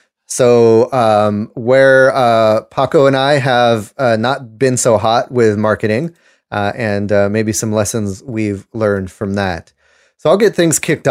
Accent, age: American, 30-49